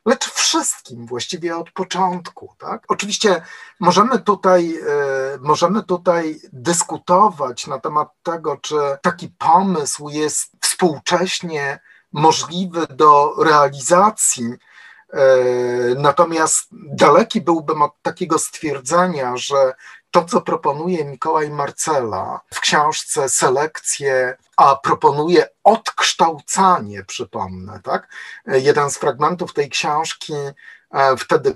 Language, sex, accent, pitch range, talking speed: Polish, male, native, 145-185 Hz, 95 wpm